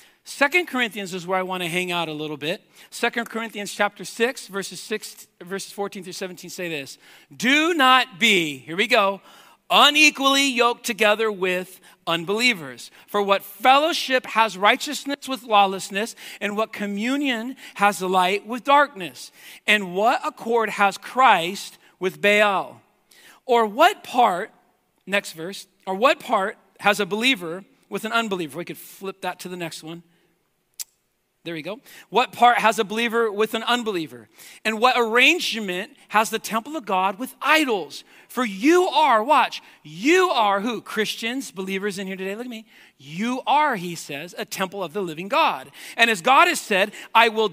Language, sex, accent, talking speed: English, male, American, 165 wpm